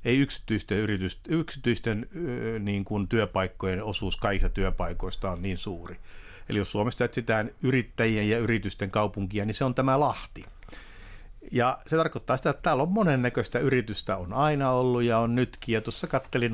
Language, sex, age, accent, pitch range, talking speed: Finnish, male, 60-79, native, 100-120 Hz, 165 wpm